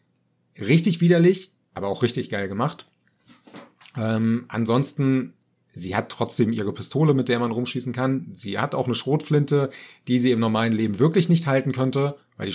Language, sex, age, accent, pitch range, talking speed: German, male, 30-49, German, 105-130 Hz, 165 wpm